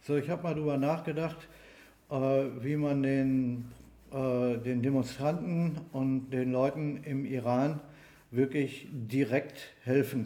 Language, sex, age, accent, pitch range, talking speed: German, male, 50-69, German, 125-150 Hz, 115 wpm